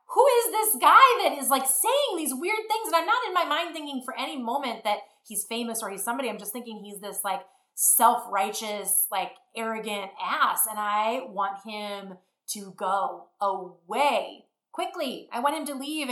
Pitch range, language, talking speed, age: 195-290 Hz, English, 185 wpm, 30-49